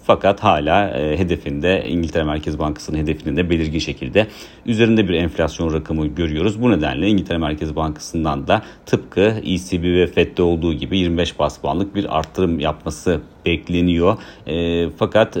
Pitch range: 80-100 Hz